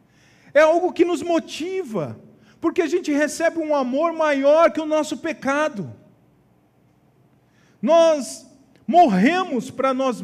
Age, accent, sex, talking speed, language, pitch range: 50-69, Brazilian, male, 115 wpm, Portuguese, 185-295 Hz